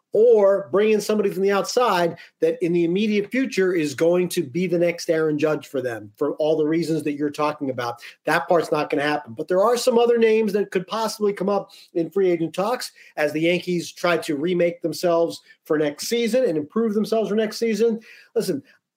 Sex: male